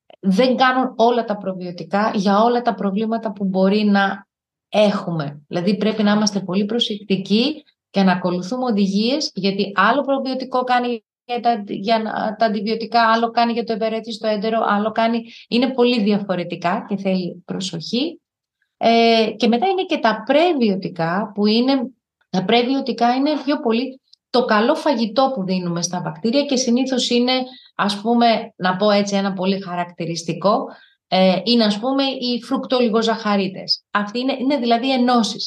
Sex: female